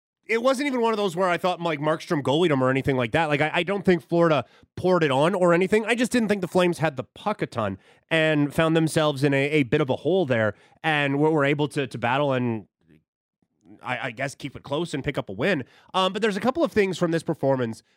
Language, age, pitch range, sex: English, 30-49, 130-170 Hz, male